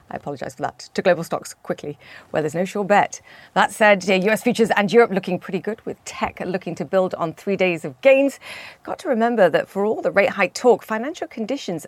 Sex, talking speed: female, 220 wpm